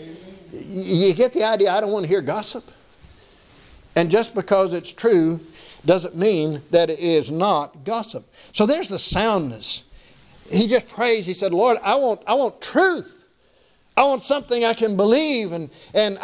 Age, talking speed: 60-79, 165 wpm